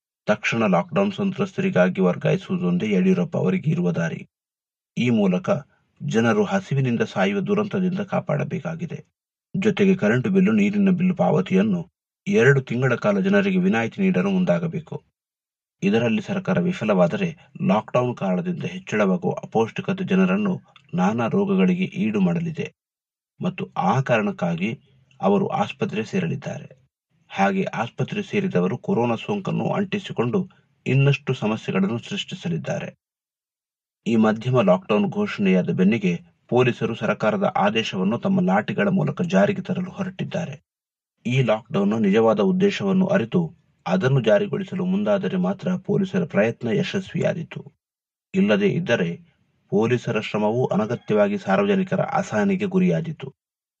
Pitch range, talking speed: 155-200 Hz, 95 wpm